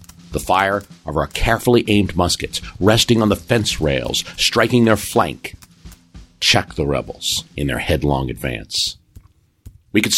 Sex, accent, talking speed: male, American, 140 wpm